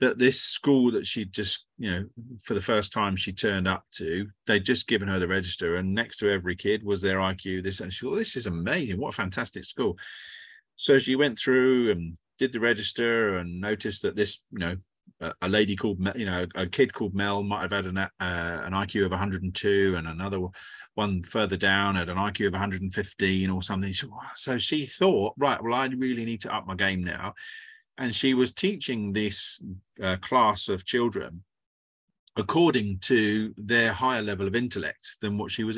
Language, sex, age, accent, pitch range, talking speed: English, male, 30-49, British, 95-120 Hz, 210 wpm